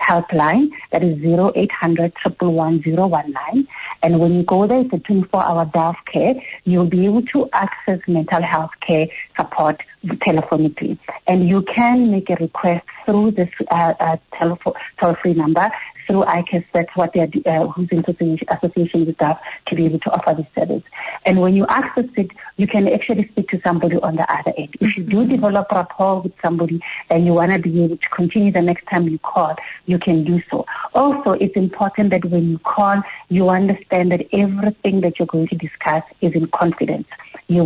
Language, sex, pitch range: English, female, 165-195 Hz